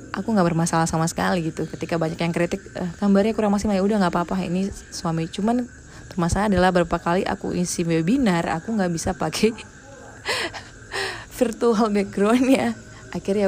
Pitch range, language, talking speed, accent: 170-200 Hz, Indonesian, 150 wpm, native